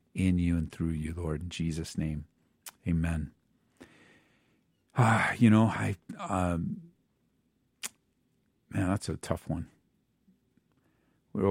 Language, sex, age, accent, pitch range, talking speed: English, male, 50-69, American, 85-100 Hz, 110 wpm